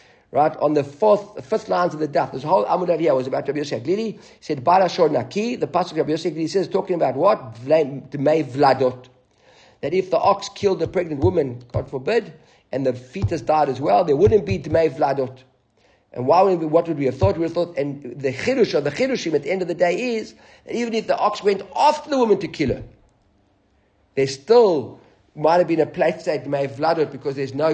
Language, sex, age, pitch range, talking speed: English, male, 50-69, 130-175 Hz, 220 wpm